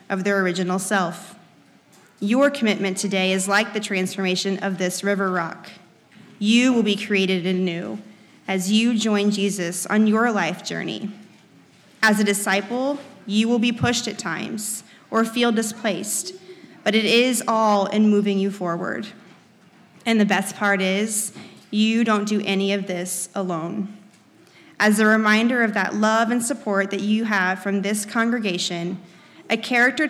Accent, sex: American, female